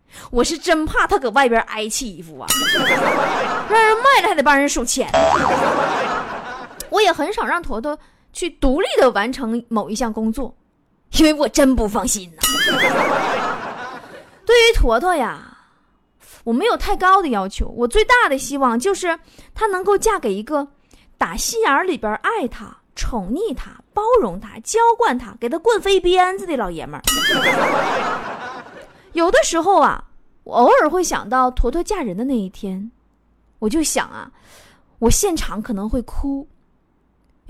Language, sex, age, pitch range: Chinese, female, 20-39, 235-360 Hz